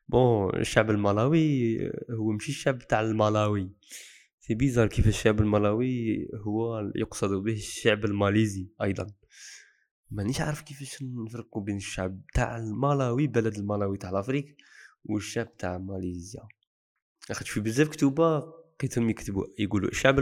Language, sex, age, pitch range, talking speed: Arabic, male, 20-39, 100-120 Hz, 120 wpm